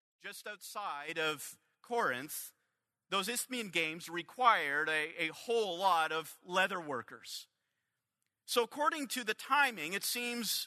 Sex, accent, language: male, American, English